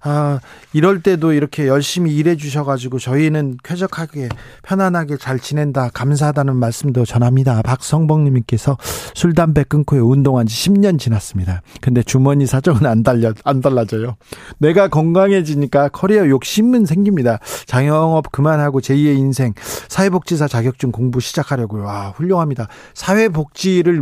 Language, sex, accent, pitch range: Korean, male, native, 125-175 Hz